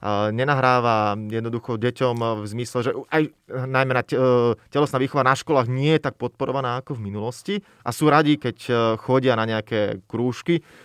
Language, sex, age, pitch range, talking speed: Slovak, male, 20-39, 125-160 Hz, 160 wpm